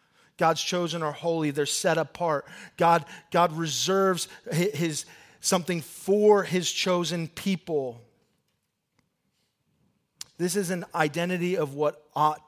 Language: English